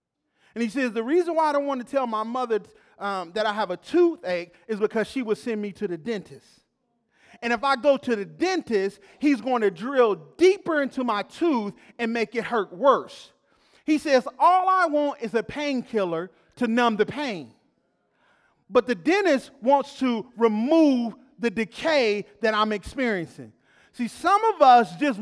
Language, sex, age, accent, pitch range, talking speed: English, male, 40-59, American, 230-315 Hz, 180 wpm